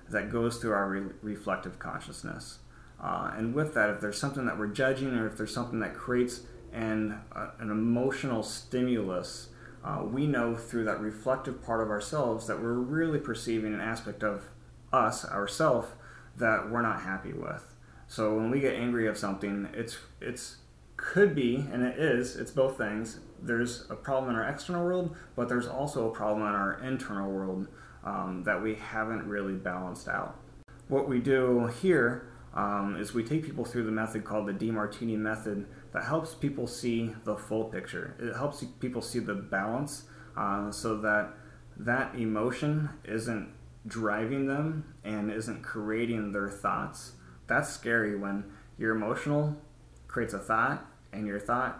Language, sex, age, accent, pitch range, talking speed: English, male, 30-49, American, 105-125 Hz, 165 wpm